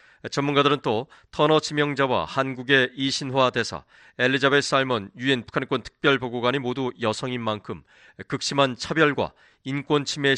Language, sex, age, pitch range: Korean, male, 30-49, 120-140 Hz